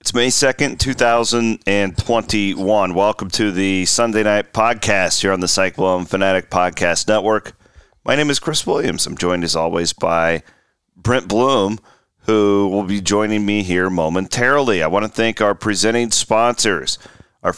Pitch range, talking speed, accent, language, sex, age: 90-110 Hz, 150 wpm, American, English, male, 40-59